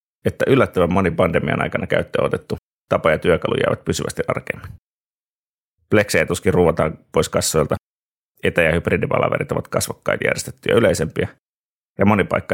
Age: 30-49